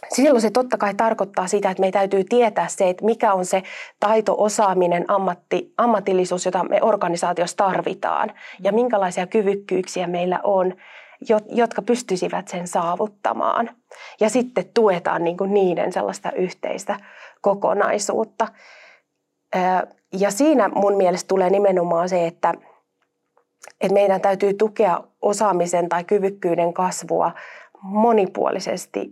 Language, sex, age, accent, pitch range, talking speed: Finnish, female, 30-49, native, 175-210 Hz, 110 wpm